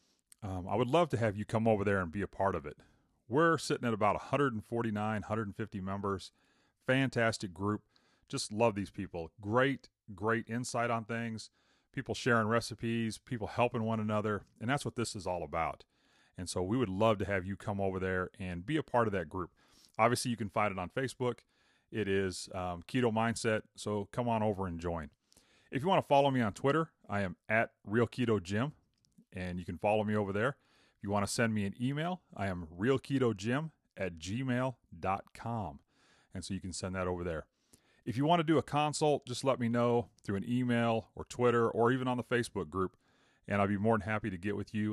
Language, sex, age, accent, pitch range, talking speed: English, male, 30-49, American, 100-120 Hz, 210 wpm